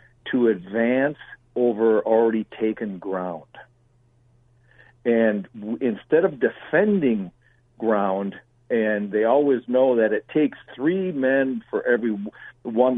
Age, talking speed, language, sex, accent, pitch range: 60-79, 105 wpm, English, male, American, 105-130 Hz